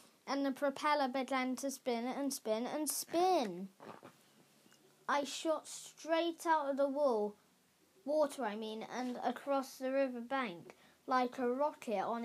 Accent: British